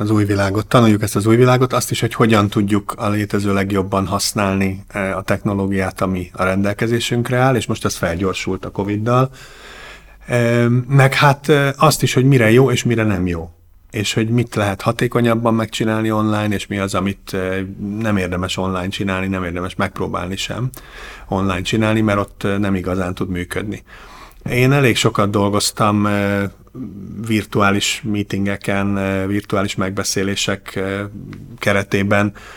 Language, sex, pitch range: Hungarian, male, 95-110 Hz